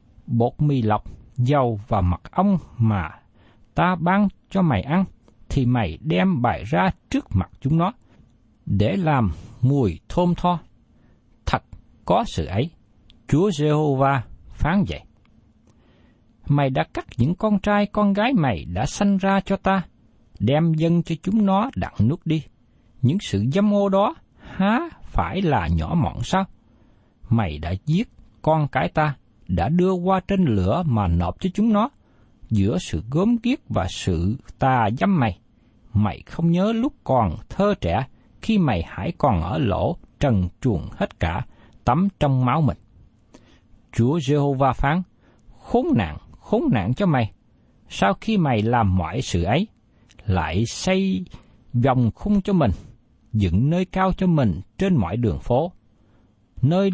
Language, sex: Vietnamese, male